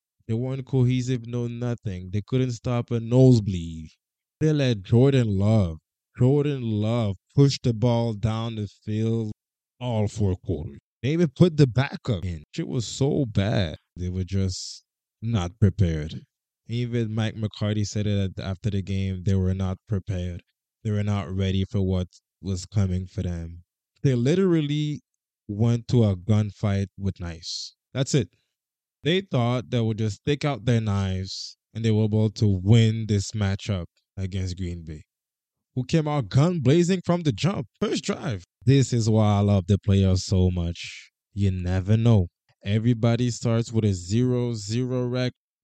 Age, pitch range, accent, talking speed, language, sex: 20-39, 95-125 Hz, American, 160 wpm, English, male